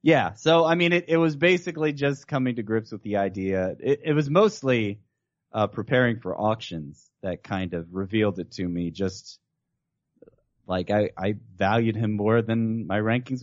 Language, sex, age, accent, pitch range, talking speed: English, male, 30-49, American, 100-125 Hz, 180 wpm